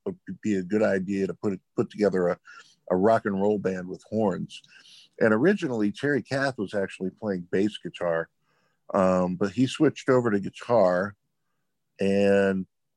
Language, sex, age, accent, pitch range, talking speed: English, male, 50-69, American, 95-115 Hz, 155 wpm